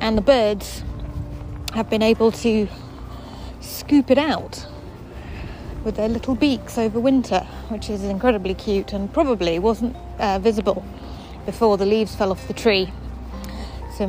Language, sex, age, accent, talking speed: English, female, 30-49, British, 140 wpm